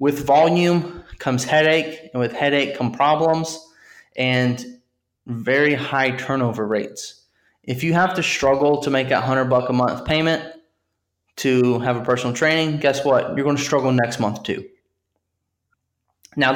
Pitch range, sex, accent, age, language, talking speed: 115-145 Hz, male, American, 20-39, English, 150 wpm